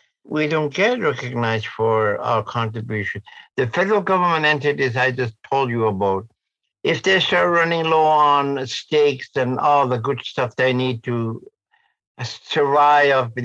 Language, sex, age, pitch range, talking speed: English, male, 60-79, 115-145 Hz, 145 wpm